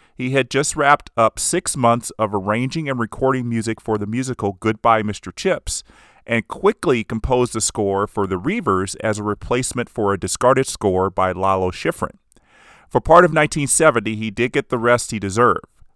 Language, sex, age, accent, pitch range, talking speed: English, male, 40-59, American, 105-135 Hz, 175 wpm